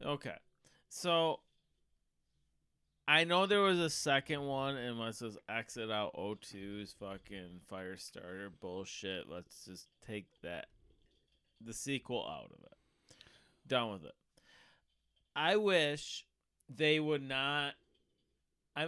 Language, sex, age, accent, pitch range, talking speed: English, male, 30-49, American, 110-150 Hz, 115 wpm